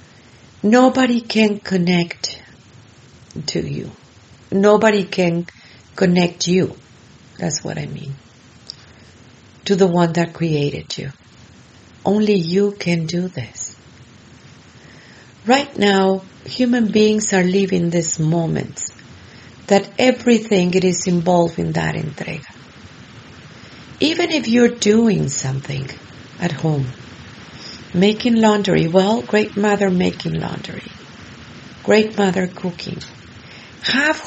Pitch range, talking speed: 155-215 Hz, 100 wpm